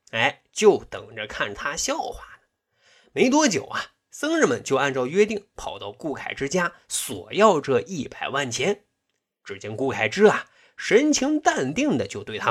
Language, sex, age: Chinese, male, 20-39